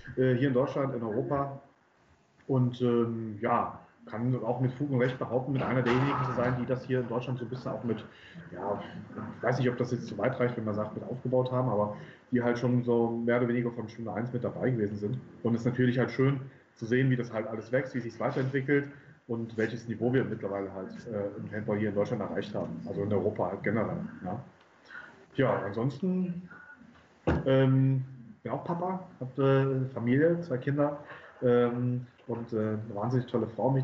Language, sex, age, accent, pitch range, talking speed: German, male, 30-49, German, 110-130 Hz, 205 wpm